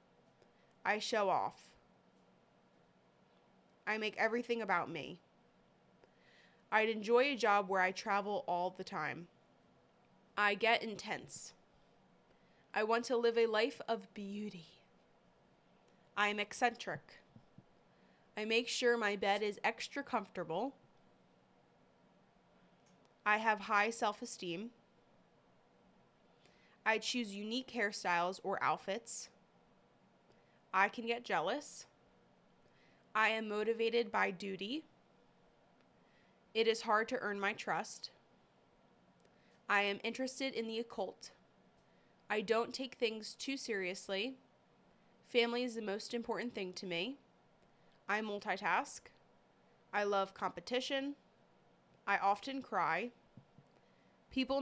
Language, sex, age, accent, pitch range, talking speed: English, female, 20-39, American, 195-235 Hz, 105 wpm